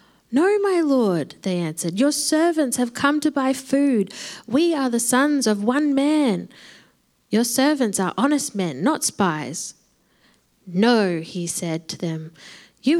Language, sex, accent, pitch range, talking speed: English, female, Australian, 200-275 Hz, 150 wpm